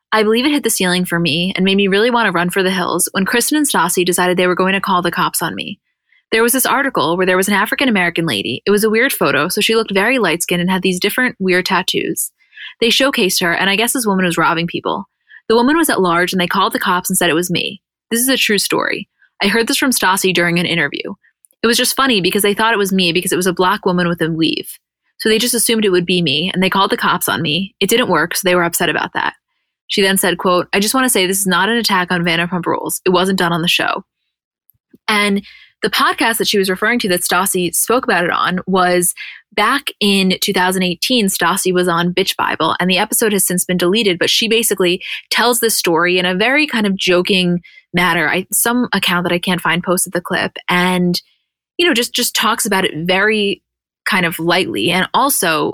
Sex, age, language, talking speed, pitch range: female, 20-39, English, 250 wpm, 180-225 Hz